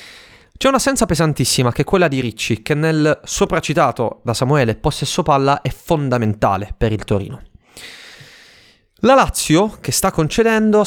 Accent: native